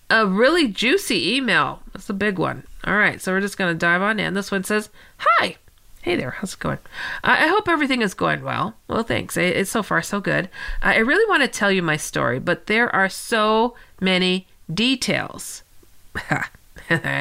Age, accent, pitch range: 40-59, American, 195-280 Hz